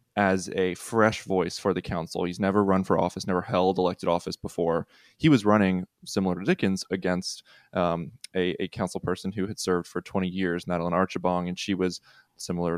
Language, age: English, 20-39